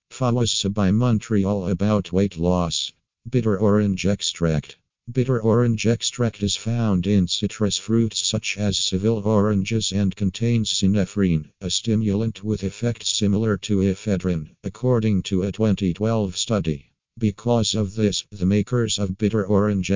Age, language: 50-69, English